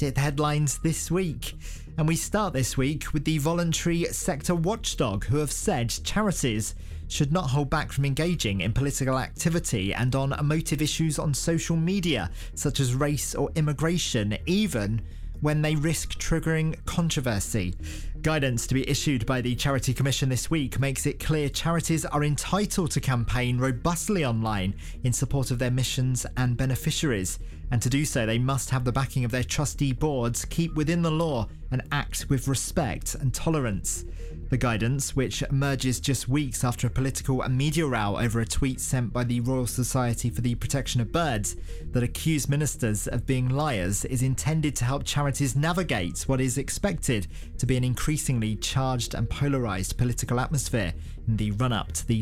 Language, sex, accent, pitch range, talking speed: English, male, British, 115-150 Hz, 170 wpm